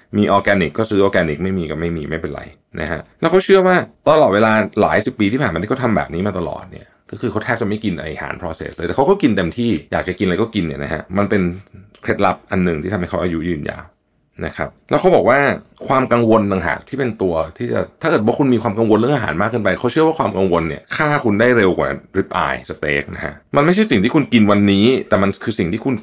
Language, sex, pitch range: Thai, male, 90-115 Hz